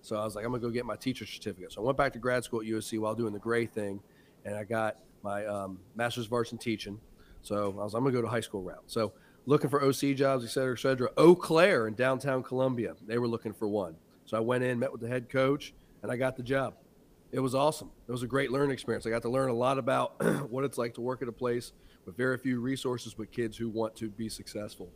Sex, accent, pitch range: male, American, 110-130 Hz